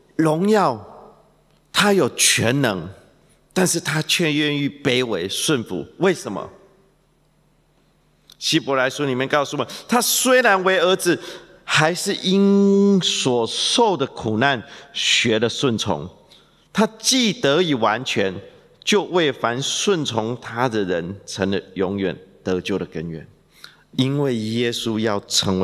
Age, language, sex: 50-69, English, male